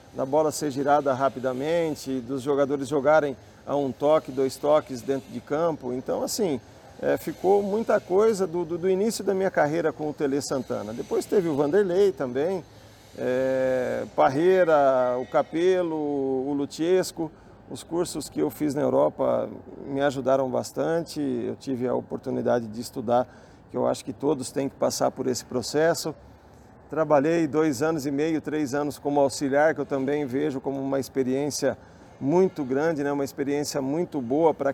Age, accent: 50-69, Brazilian